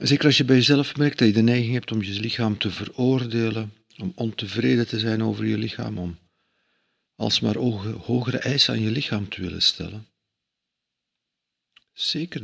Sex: male